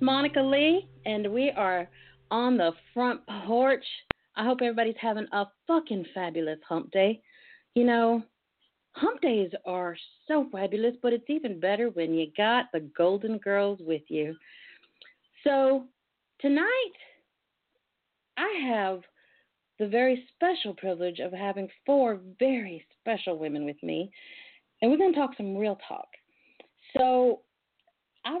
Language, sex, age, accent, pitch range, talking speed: English, female, 40-59, American, 195-275 Hz, 135 wpm